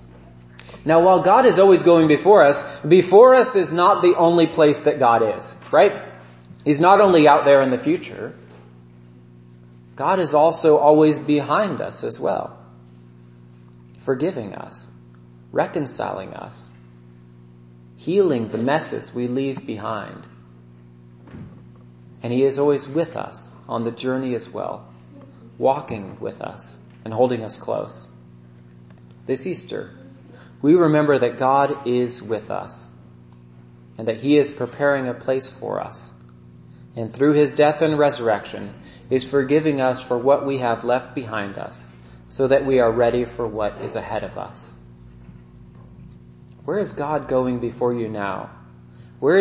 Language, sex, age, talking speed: English, male, 30-49, 140 wpm